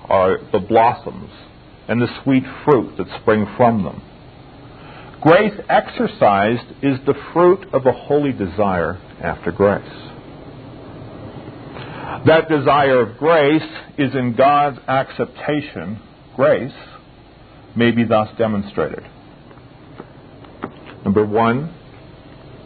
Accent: American